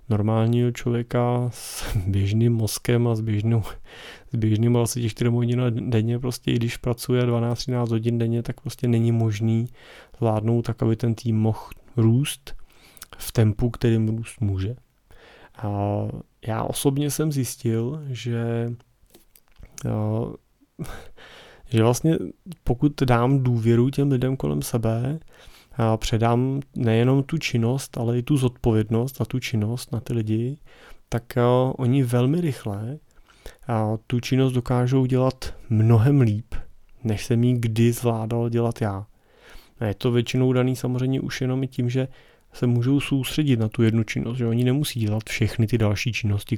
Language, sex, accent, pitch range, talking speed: Czech, male, native, 115-130 Hz, 140 wpm